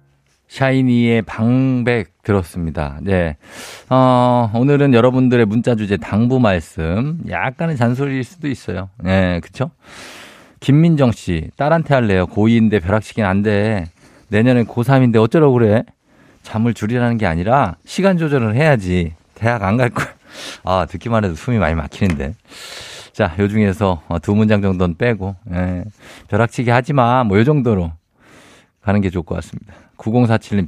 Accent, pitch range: native, 90-125 Hz